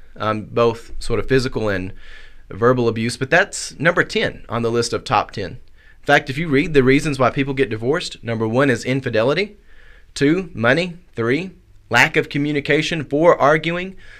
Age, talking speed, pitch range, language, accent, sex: 30-49, 175 wpm, 115-145 Hz, English, American, male